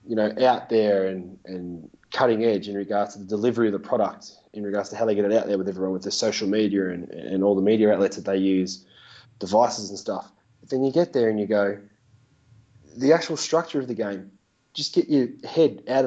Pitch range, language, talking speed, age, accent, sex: 100-135 Hz, English, 230 wpm, 20-39, Australian, male